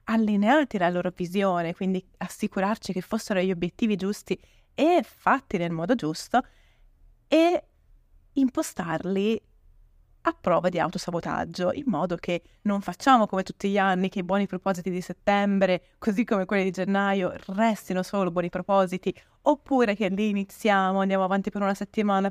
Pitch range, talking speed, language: 185-220 Hz, 150 wpm, Italian